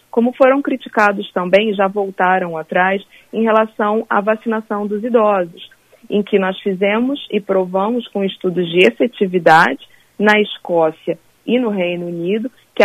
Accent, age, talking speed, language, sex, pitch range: Brazilian, 40-59, 140 wpm, Portuguese, female, 180-210 Hz